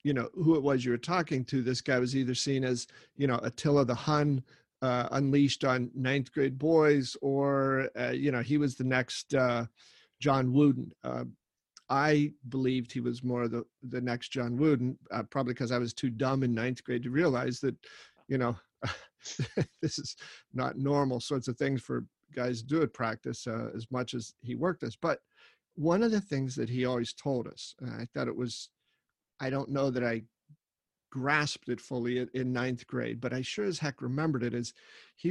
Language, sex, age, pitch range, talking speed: English, male, 40-59, 125-145 Hz, 200 wpm